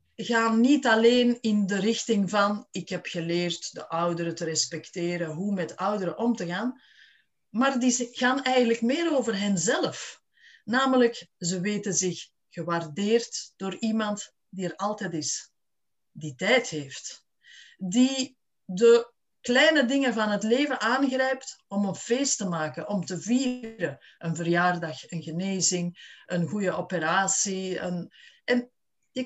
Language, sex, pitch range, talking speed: Dutch, female, 175-245 Hz, 135 wpm